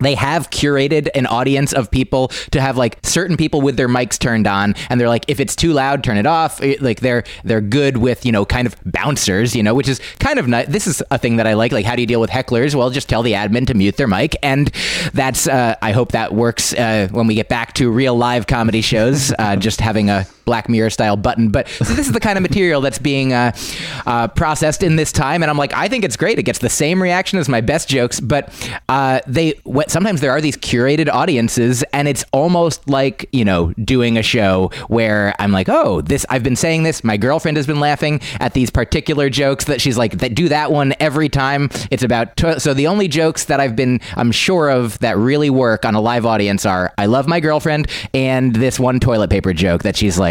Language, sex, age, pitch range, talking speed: English, male, 20-39, 115-145 Hz, 245 wpm